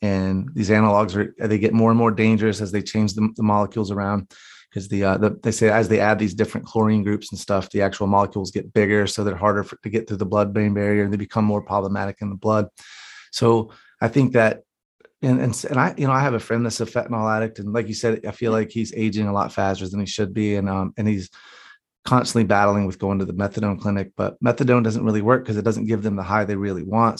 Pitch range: 100-110 Hz